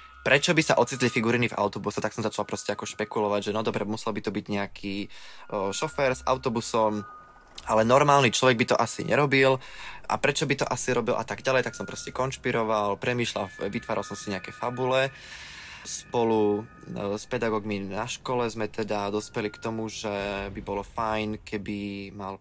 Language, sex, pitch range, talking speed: Slovak, male, 105-120 Hz, 175 wpm